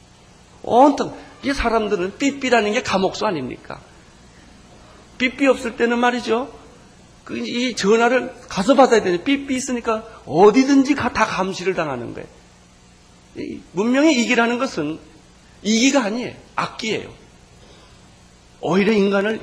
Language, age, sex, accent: Korean, 40-59, male, native